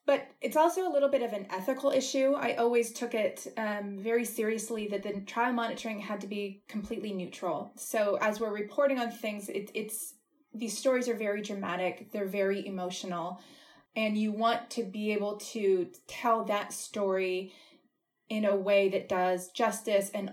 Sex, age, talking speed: female, 20-39, 175 wpm